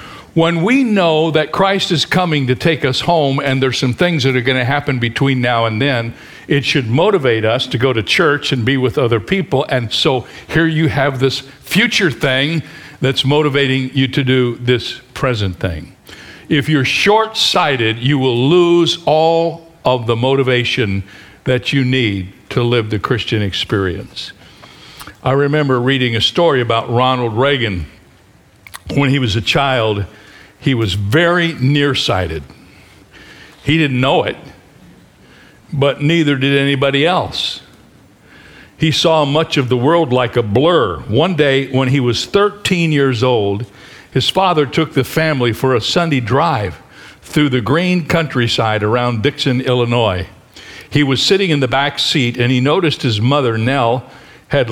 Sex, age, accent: male, 60-79, American